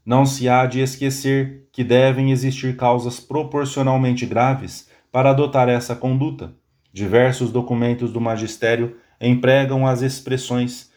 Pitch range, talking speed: 115-140 Hz, 120 wpm